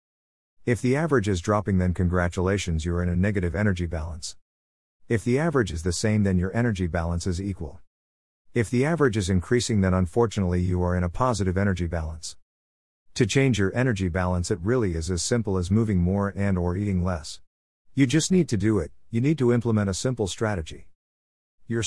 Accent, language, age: American, English, 50-69